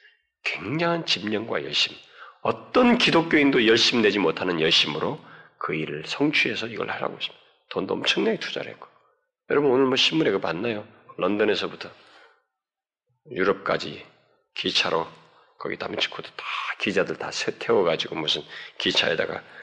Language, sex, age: Korean, male, 40-59